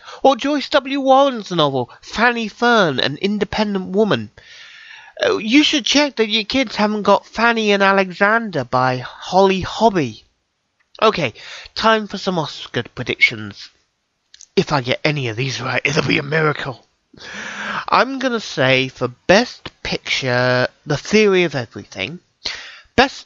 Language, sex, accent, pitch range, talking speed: English, male, British, 135-220 Hz, 135 wpm